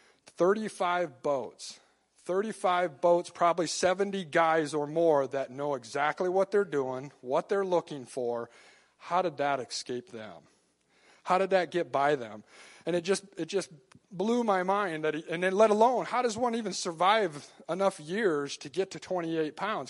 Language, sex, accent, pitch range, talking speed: English, male, American, 135-180 Hz, 170 wpm